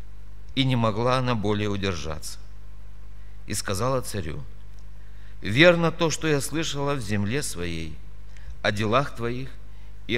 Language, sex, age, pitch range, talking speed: Russian, male, 60-79, 105-155 Hz, 125 wpm